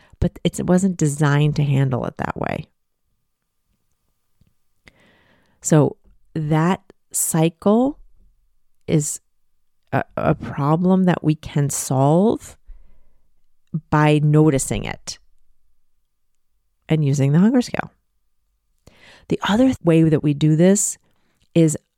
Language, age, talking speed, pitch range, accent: English, 40-59, 100 wpm, 135-165 Hz, American